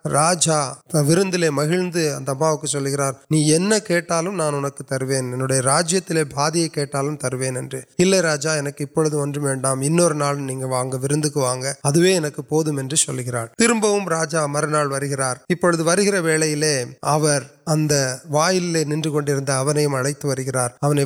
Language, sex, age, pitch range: Urdu, male, 20-39, 135-155 Hz